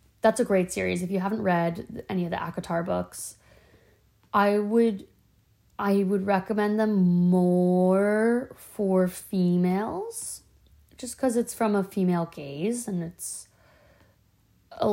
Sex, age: female, 20-39